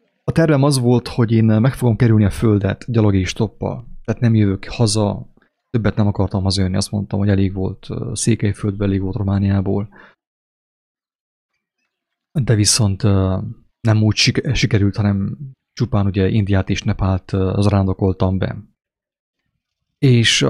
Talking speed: 130 wpm